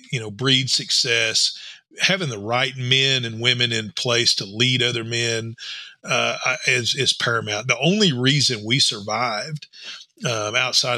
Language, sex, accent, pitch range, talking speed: English, male, American, 120-150 Hz, 150 wpm